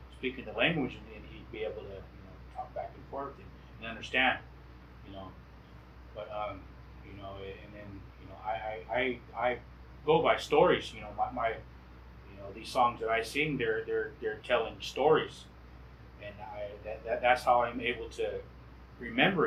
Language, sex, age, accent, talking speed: English, male, 30-49, American, 190 wpm